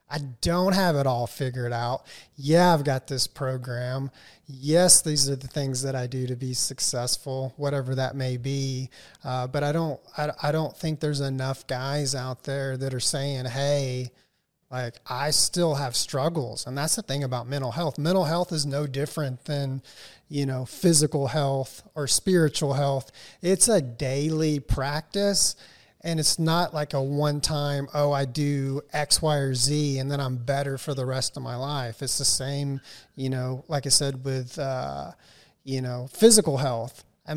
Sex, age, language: male, 30-49, English